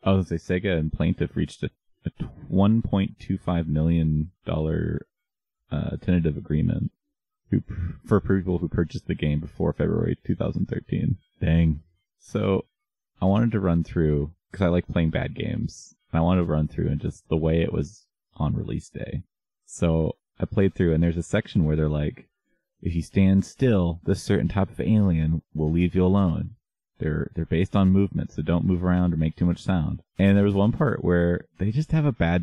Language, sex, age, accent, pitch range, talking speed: English, male, 30-49, American, 85-115 Hz, 185 wpm